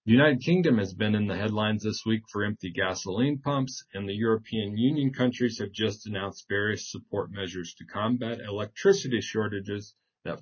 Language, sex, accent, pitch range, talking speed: English, male, American, 100-120 Hz, 175 wpm